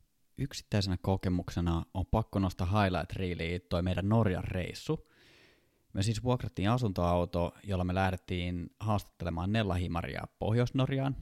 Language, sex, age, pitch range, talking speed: Finnish, male, 20-39, 90-110 Hz, 105 wpm